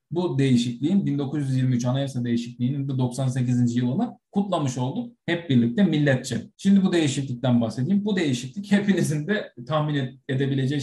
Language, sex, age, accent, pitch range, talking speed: Turkish, male, 40-59, native, 125-195 Hz, 120 wpm